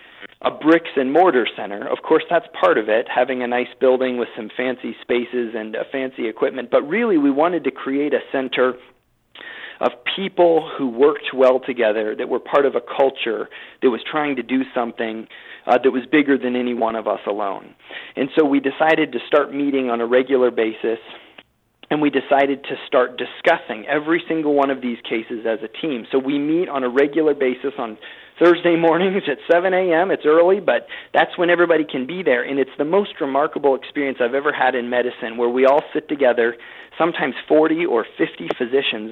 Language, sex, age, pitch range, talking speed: English, male, 40-59, 125-160 Hz, 195 wpm